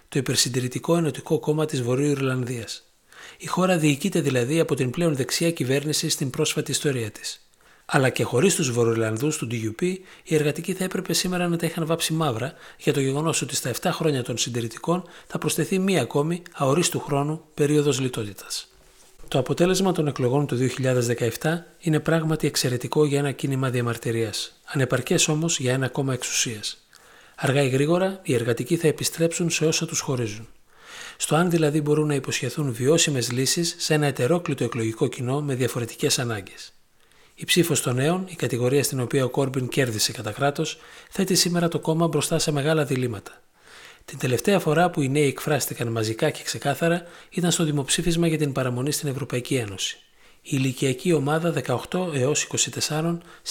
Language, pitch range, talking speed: Greek, 130-165 Hz, 165 wpm